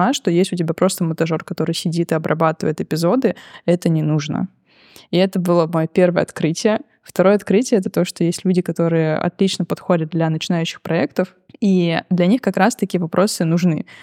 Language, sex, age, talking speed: Russian, female, 20-39, 175 wpm